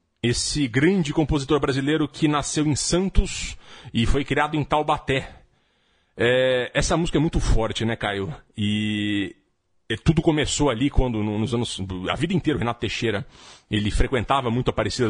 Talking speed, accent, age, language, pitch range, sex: 150 wpm, Brazilian, 40-59, Portuguese, 115-150 Hz, male